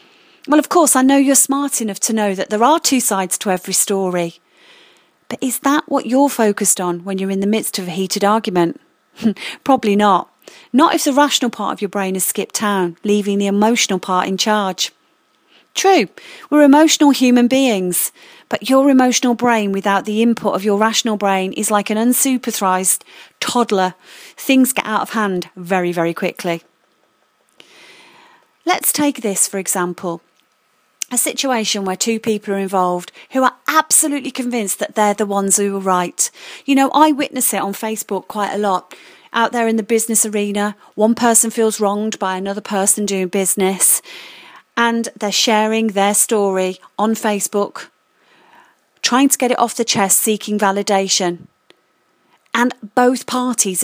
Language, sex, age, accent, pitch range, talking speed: English, female, 40-59, British, 195-250 Hz, 165 wpm